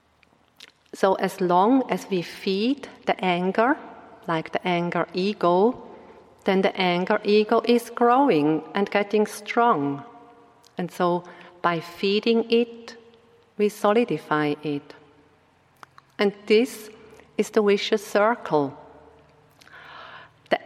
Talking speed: 105 wpm